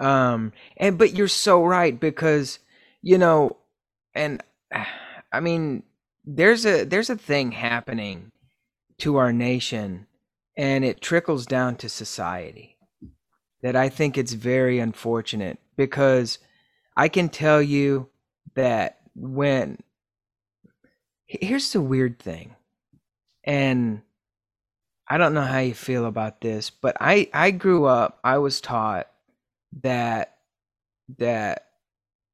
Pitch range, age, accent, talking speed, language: 110-145 Hz, 30-49, American, 115 wpm, English